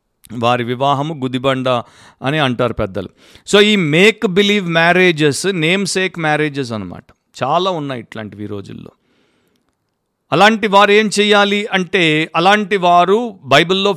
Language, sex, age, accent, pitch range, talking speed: Telugu, male, 50-69, native, 130-180 Hz, 105 wpm